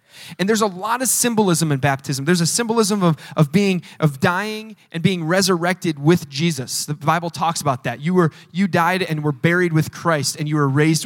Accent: American